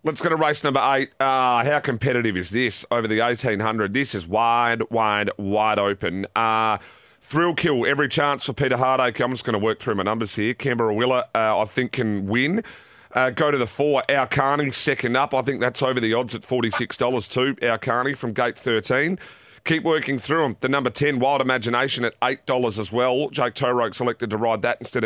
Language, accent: English, Australian